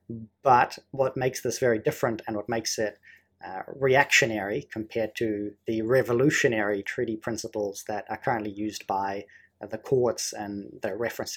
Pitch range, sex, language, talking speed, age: 110-125 Hz, male, English, 160 wpm, 30-49